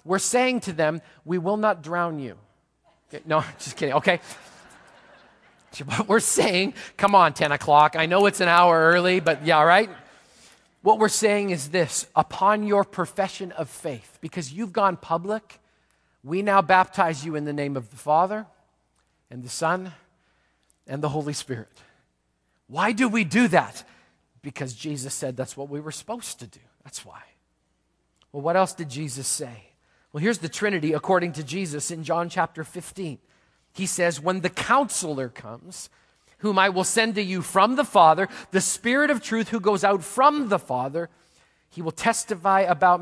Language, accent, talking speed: English, American, 175 wpm